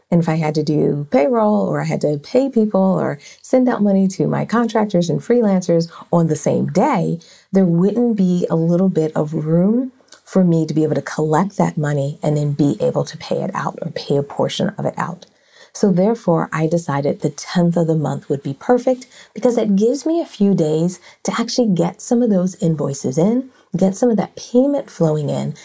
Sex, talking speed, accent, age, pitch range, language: female, 215 wpm, American, 30-49, 160-235 Hz, English